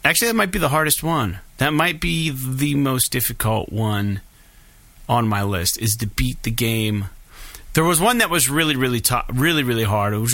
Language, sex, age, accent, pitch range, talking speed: English, male, 30-49, American, 105-135 Hz, 205 wpm